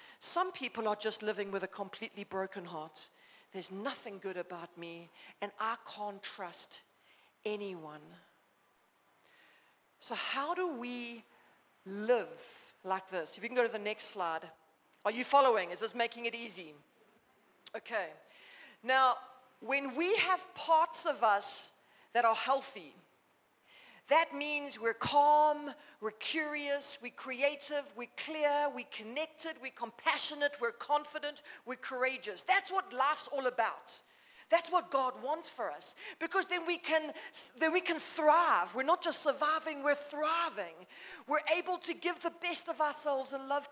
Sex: female